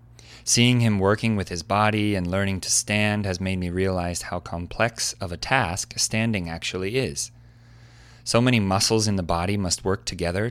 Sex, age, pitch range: male, 30-49, 95-120 Hz